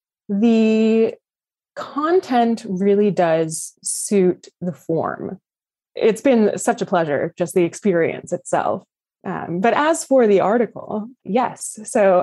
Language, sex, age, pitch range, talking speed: English, female, 20-39, 175-235 Hz, 120 wpm